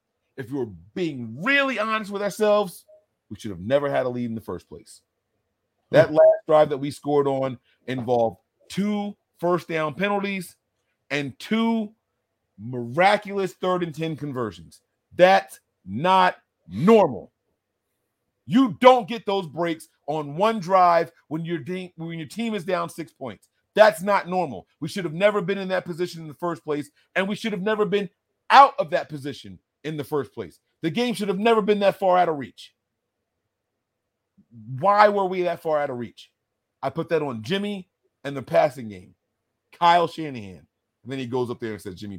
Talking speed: 180 wpm